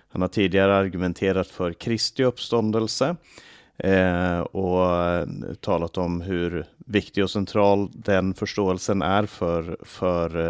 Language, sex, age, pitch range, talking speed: Swedish, male, 30-49, 95-120 Hz, 115 wpm